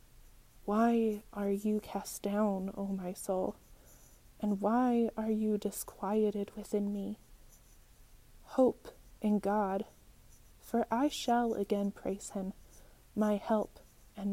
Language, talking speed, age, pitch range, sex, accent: English, 115 wpm, 20-39, 190-215 Hz, female, American